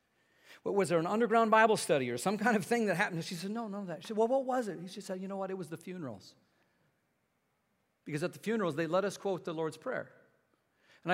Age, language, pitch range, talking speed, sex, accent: 50-69, English, 115-165 Hz, 250 wpm, male, American